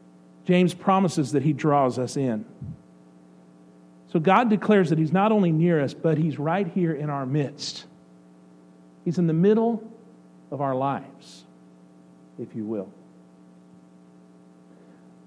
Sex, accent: male, American